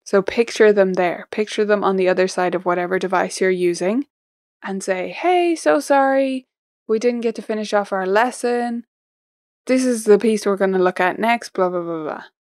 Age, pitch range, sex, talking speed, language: 10-29, 180-235 Hz, female, 200 wpm, English